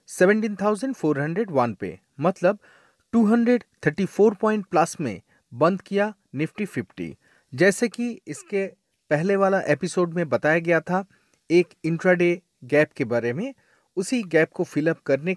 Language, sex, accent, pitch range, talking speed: Hindi, male, native, 155-220 Hz, 115 wpm